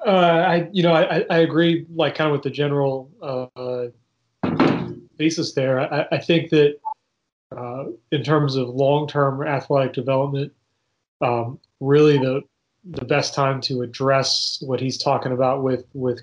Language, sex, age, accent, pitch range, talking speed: English, male, 30-49, American, 125-140 Hz, 155 wpm